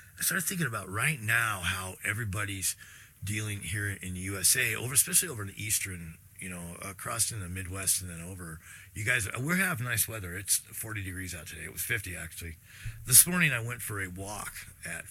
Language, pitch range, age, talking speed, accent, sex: English, 90-110 Hz, 40-59, 205 wpm, American, male